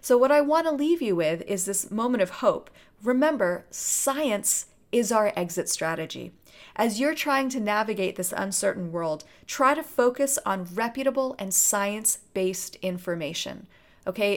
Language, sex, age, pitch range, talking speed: English, female, 40-59, 180-230 Hz, 150 wpm